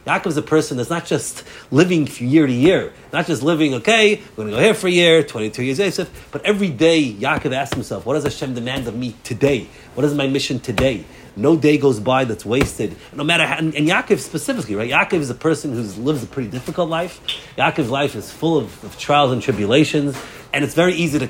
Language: English